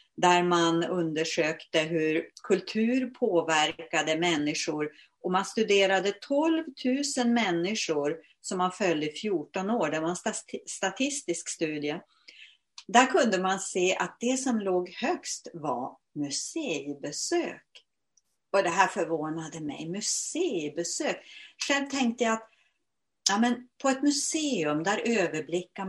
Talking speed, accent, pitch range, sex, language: 120 wpm, native, 165-215 Hz, female, Swedish